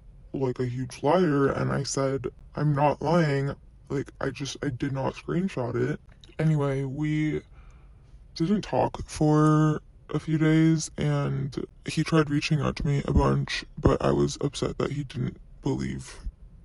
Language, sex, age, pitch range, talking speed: English, female, 20-39, 125-155 Hz, 155 wpm